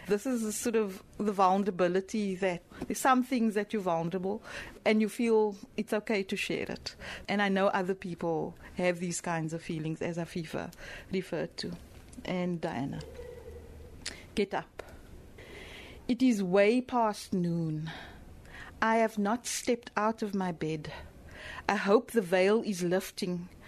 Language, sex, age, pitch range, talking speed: English, female, 60-79, 180-225 Hz, 145 wpm